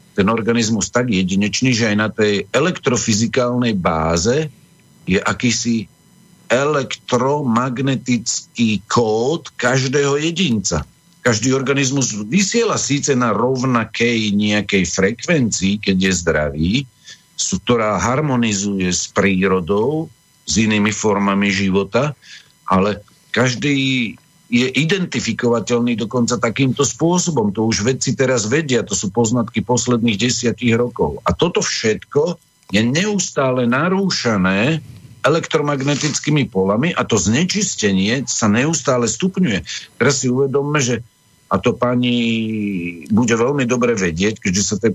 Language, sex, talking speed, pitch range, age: Slovak, male, 110 wpm, 110-140 Hz, 50-69